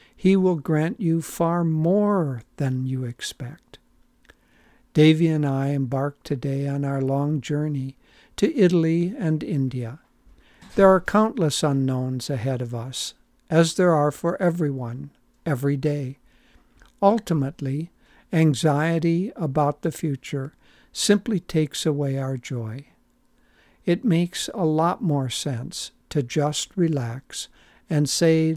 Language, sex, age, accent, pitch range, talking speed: English, male, 60-79, American, 135-165 Hz, 120 wpm